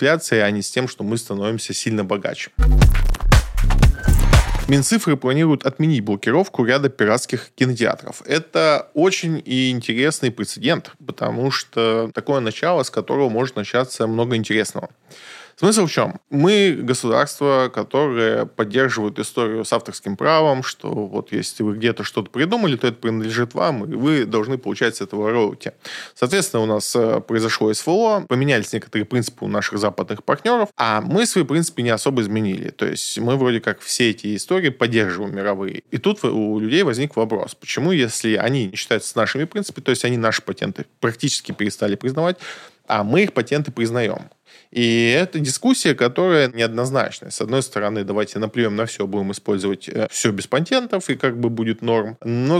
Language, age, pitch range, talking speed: Russian, 20-39, 110-145 Hz, 155 wpm